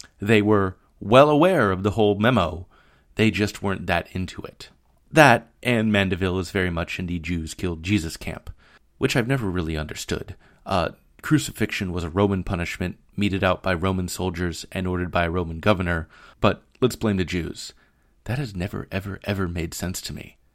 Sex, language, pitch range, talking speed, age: male, English, 90-120 Hz, 180 wpm, 30-49